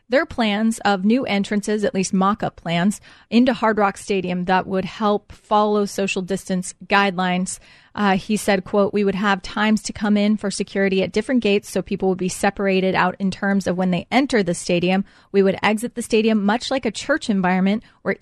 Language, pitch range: English, 190-220 Hz